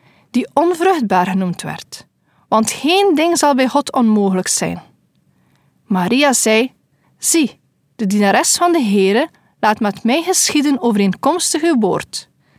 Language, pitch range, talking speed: Dutch, 200-290 Hz, 130 wpm